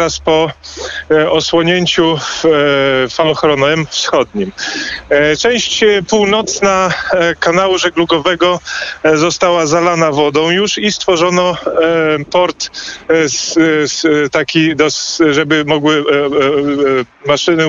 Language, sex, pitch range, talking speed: Polish, male, 150-175 Hz, 80 wpm